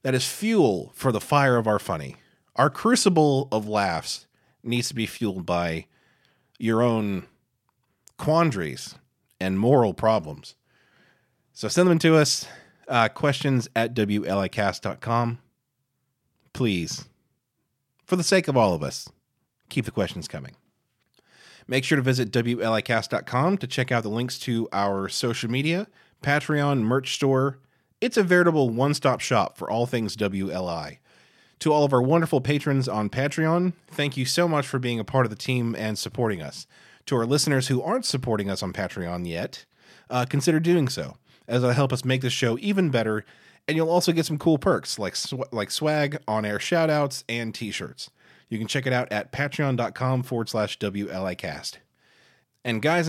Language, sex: English, male